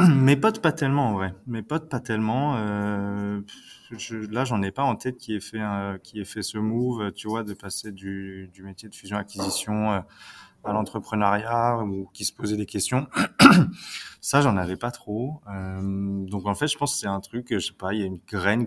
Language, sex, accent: French, male, French